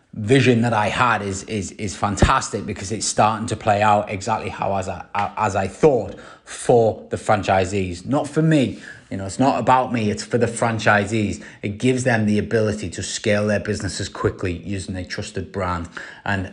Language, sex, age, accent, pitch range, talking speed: English, male, 20-39, British, 100-120 Hz, 190 wpm